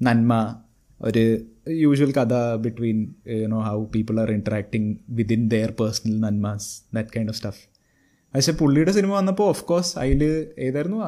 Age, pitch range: 20-39, 115-145 Hz